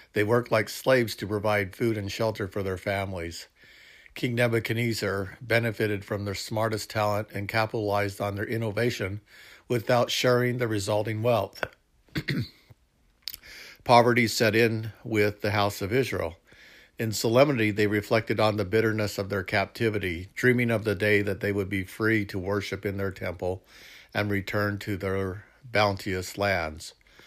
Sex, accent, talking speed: male, American, 145 wpm